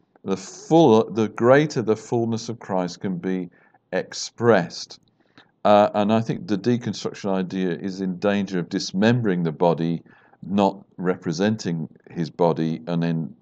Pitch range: 95-130 Hz